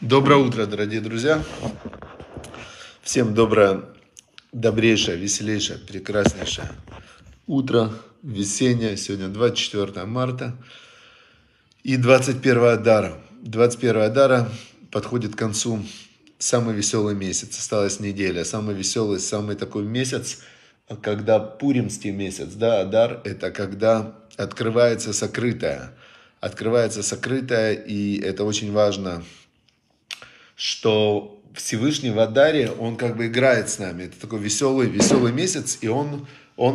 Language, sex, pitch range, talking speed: Russian, male, 105-125 Hz, 105 wpm